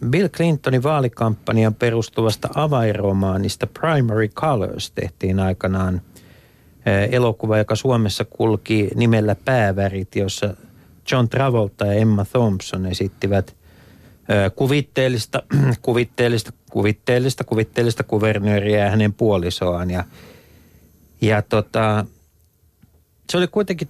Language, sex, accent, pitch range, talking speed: Finnish, male, native, 95-120 Hz, 85 wpm